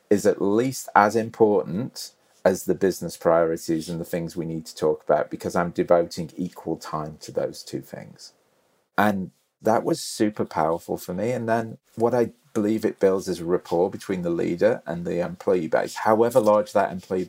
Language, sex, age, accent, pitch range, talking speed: English, male, 40-59, British, 90-125 Hz, 185 wpm